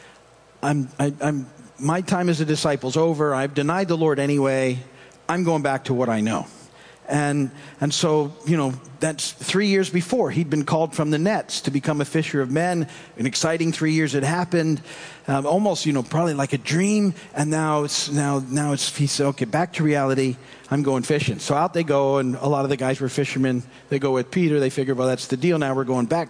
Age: 50-69